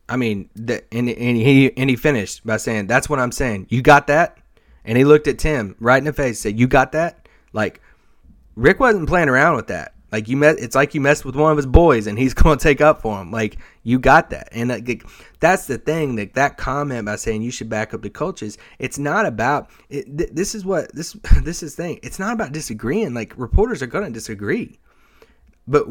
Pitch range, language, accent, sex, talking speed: 115-155 Hz, English, American, male, 240 wpm